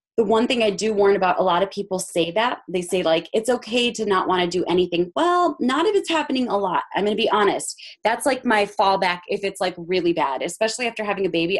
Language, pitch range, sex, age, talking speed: English, 180-225 Hz, female, 20-39, 260 wpm